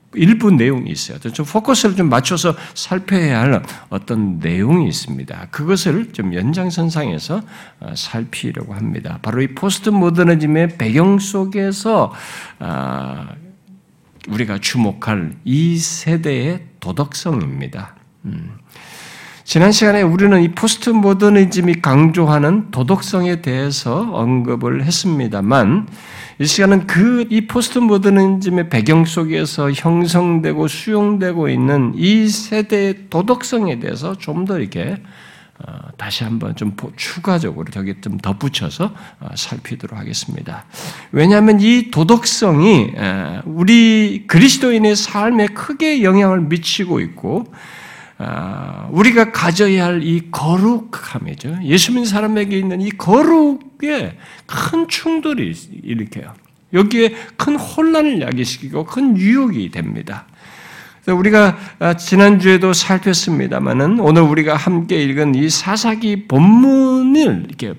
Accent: native